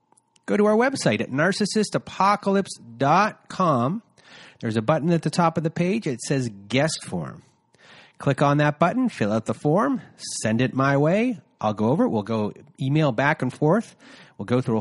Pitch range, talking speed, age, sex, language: 120-165 Hz, 180 wpm, 30-49, male, English